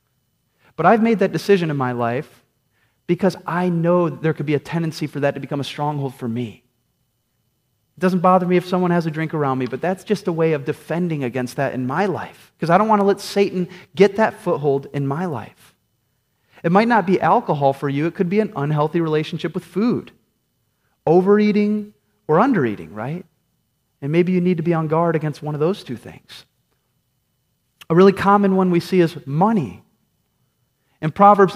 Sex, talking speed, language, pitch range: male, 195 wpm, English, 130-180 Hz